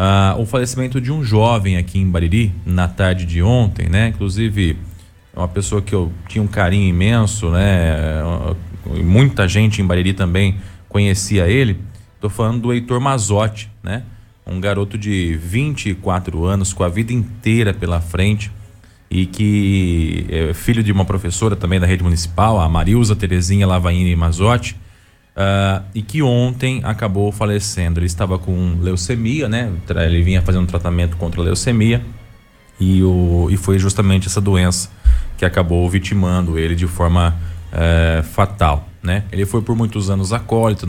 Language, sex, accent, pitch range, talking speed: Portuguese, male, Brazilian, 90-110 Hz, 155 wpm